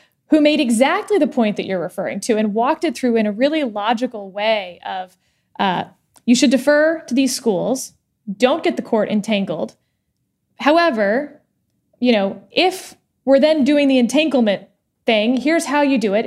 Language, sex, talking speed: English, female, 170 wpm